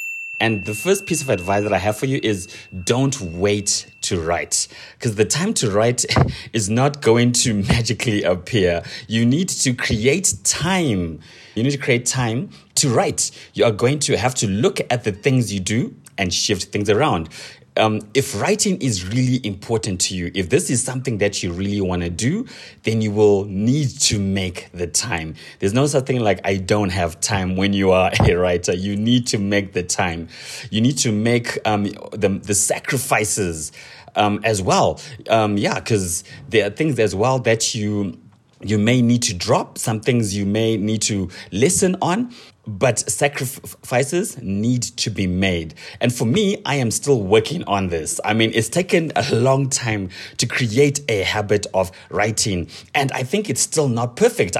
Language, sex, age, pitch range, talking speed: English, male, 30-49, 100-130 Hz, 185 wpm